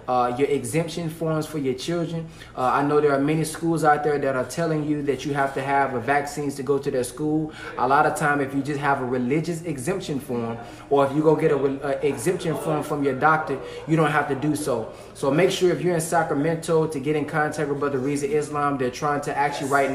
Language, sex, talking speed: English, male, 240 wpm